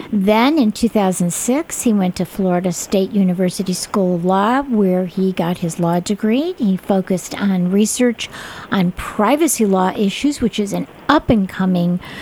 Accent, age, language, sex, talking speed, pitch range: American, 50-69, English, female, 155 wpm, 195-240 Hz